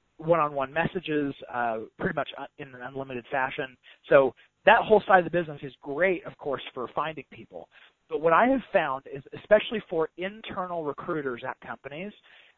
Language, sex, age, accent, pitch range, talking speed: English, male, 30-49, American, 140-180 Hz, 165 wpm